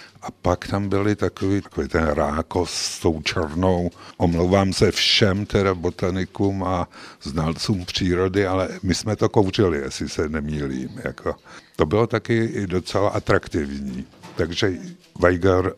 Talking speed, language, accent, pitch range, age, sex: 135 wpm, Czech, native, 75-100 Hz, 60-79, male